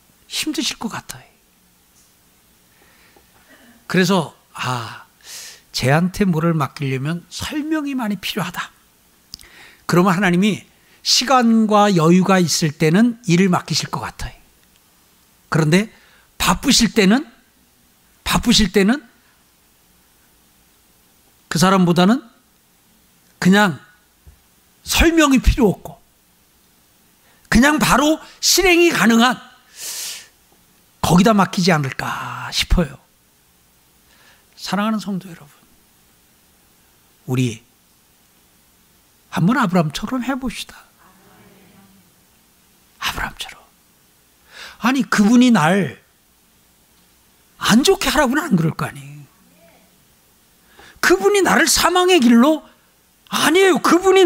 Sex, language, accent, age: male, Korean, native, 60-79